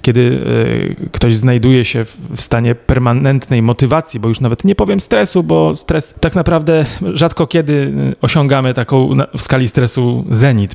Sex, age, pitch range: male, 30-49, 115-135 Hz